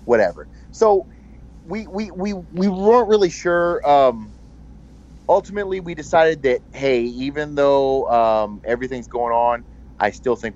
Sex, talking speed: male, 135 wpm